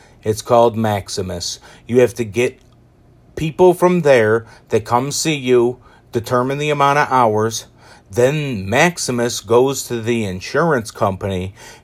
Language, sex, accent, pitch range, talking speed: English, male, American, 110-130 Hz, 130 wpm